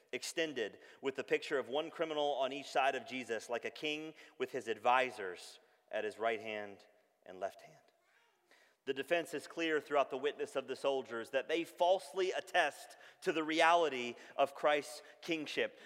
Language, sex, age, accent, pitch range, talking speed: English, male, 30-49, American, 165-275 Hz, 170 wpm